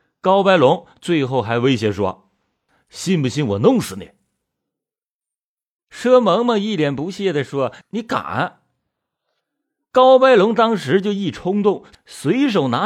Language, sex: Chinese, male